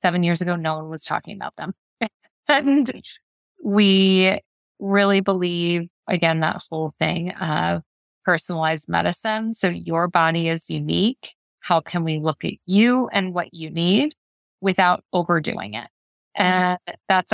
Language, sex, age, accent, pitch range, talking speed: English, female, 20-39, American, 165-195 Hz, 140 wpm